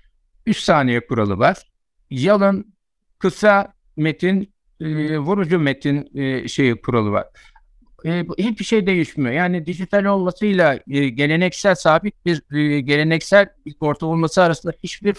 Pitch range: 140-185 Hz